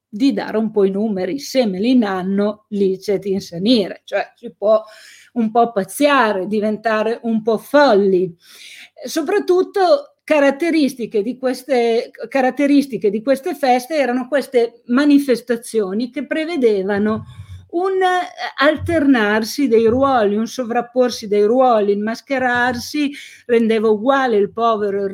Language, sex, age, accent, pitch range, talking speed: Italian, female, 50-69, native, 210-270 Hz, 120 wpm